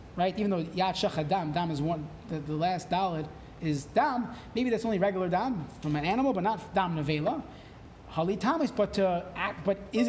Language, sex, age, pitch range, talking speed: English, male, 30-49, 175-230 Hz, 210 wpm